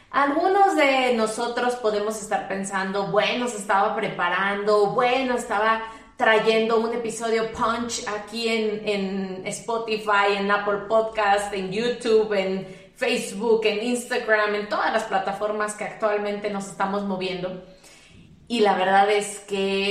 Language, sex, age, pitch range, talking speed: Spanish, female, 30-49, 195-230 Hz, 130 wpm